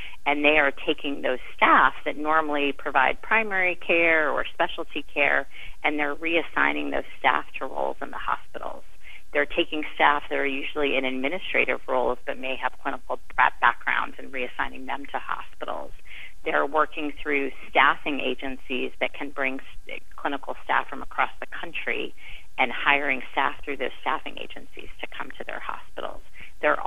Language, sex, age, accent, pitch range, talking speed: English, female, 30-49, American, 135-155 Hz, 155 wpm